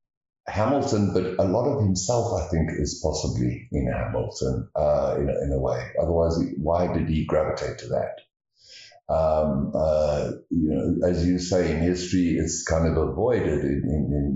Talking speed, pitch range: 165 wpm, 80-95 Hz